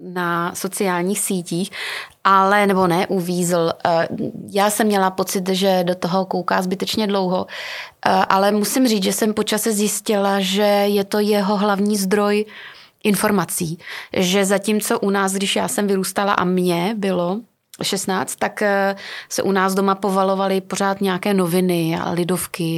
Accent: native